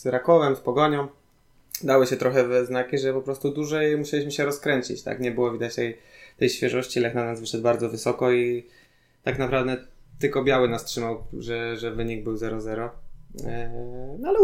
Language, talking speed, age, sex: Polish, 175 wpm, 20-39, male